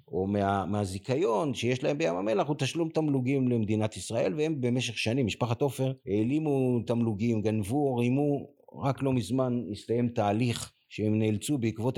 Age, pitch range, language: 50-69, 100-145 Hz, Hebrew